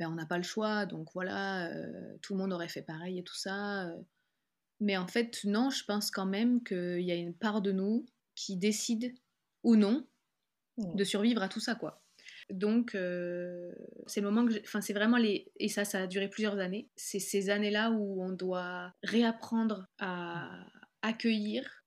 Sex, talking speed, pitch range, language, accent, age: female, 190 wpm, 190-225 Hz, French, French, 20-39